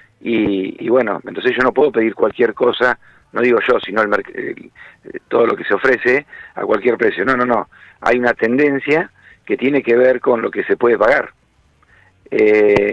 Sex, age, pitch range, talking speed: male, 50-69, 115-165 Hz, 180 wpm